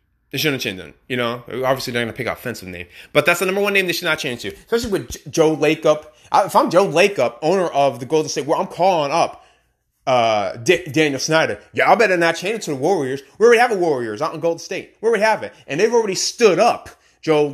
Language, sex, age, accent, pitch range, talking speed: English, male, 30-49, American, 130-180 Hz, 250 wpm